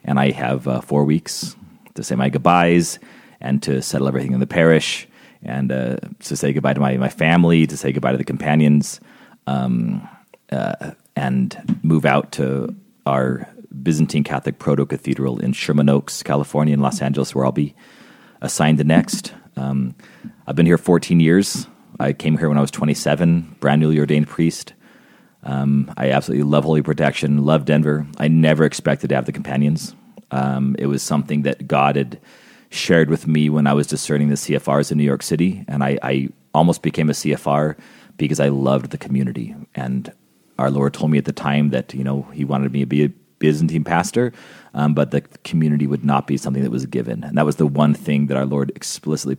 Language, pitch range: English, 70-75 Hz